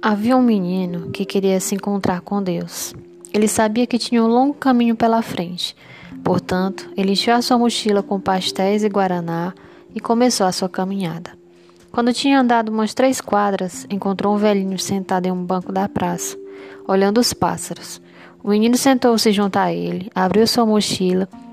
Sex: female